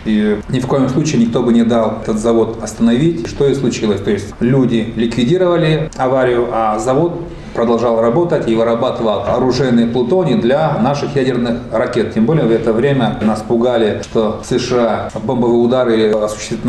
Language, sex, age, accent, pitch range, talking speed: Russian, male, 30-49, native, 115-150 Hz, 160 wpm